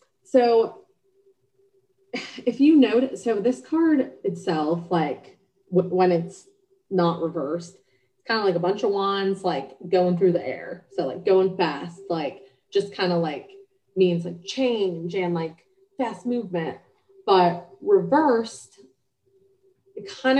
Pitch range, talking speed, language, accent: 175-260 Hz, 135 wpm, English, American